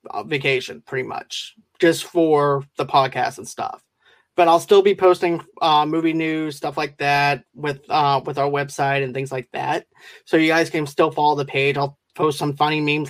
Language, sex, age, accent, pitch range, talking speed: English, male, 20-39, American, 140-175 Hz, 195 wpm